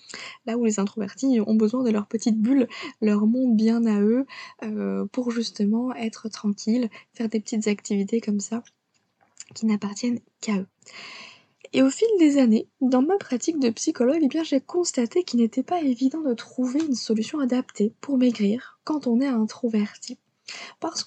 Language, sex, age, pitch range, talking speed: French, female, 20-39, 215-265 Hz, 165 wpm